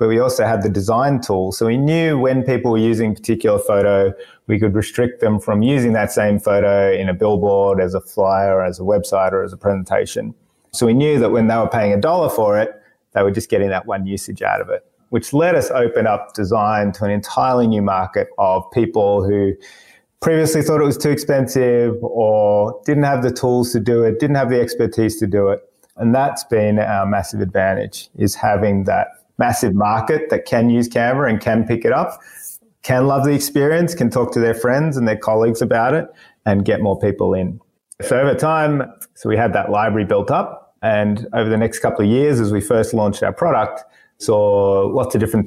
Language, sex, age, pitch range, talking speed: English, male, 30-49, 100-125 Hz, 215 wpm